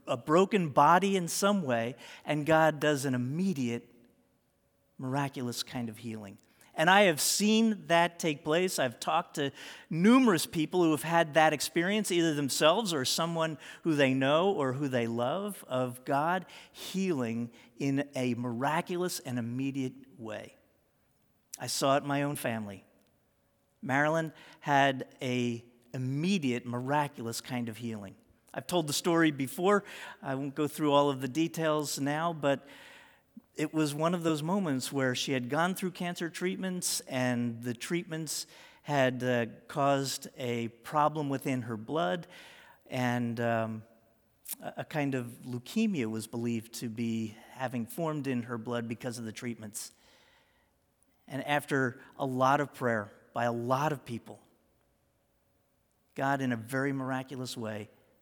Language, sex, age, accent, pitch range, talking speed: English, male, 50-69, American, 120-160 Hz, 145 wpm